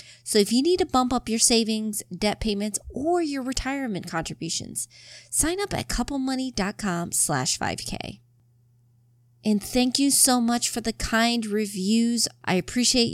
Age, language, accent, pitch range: 30-49, English, American, 170-240 Hz